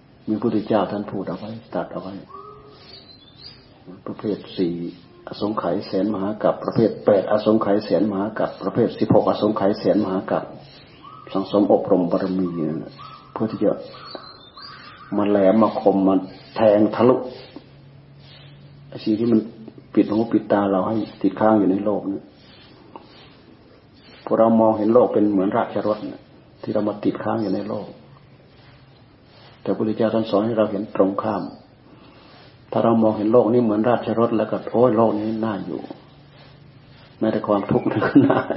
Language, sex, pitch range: Thai, male, 105-130 Hz